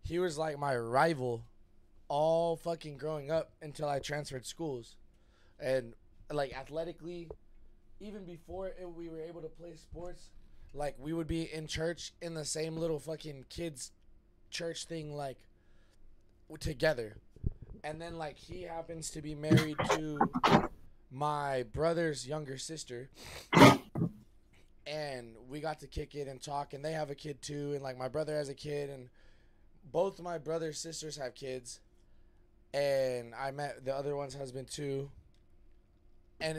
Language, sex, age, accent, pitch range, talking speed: English, male, 20-39, American, 130-165 Hz, 150 wpm